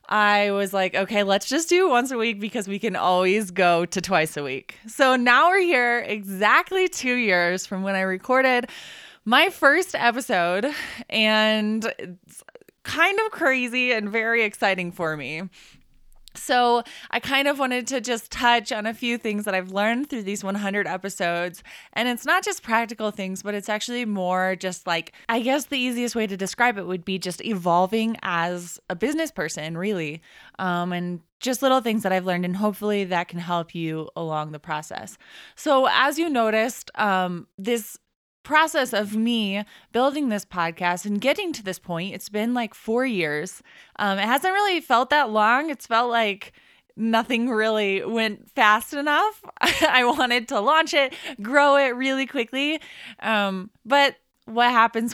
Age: 20-39